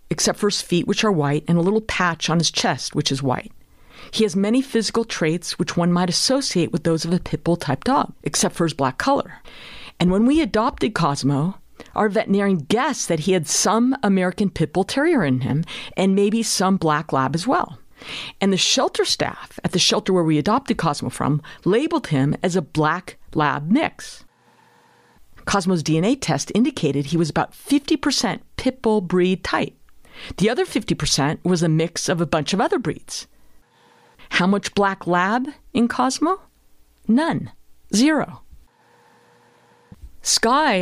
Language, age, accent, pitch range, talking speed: English, 50-69, American, 165-230 Hz, 170 wpm